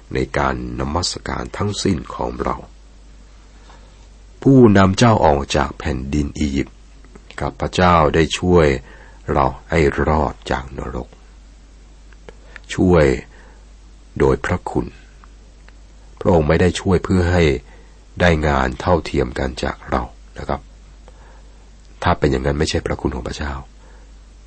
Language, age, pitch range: Thai, 60-79, 65-85 Hz